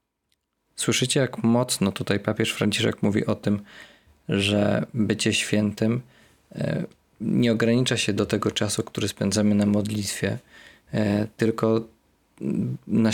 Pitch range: 105-120 Hz